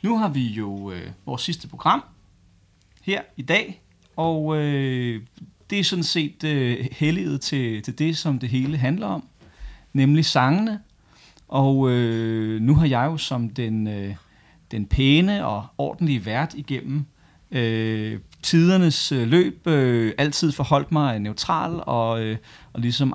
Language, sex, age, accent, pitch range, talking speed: Danish, male, 30-49, native, 115-155 Hz, 145 wpm